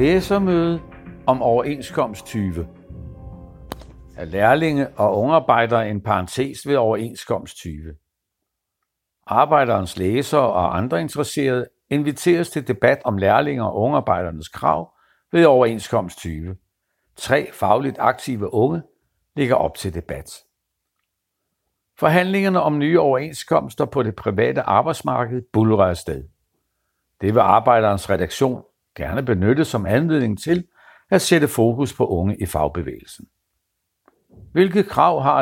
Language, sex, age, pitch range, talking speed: Danish, male, 60-79, 90-140 Hz, 110 wpm